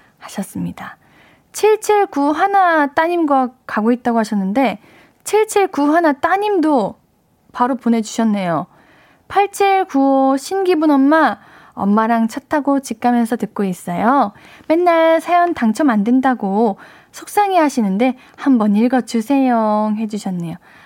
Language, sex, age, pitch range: Korean, female, 10-29, 220-300 Hz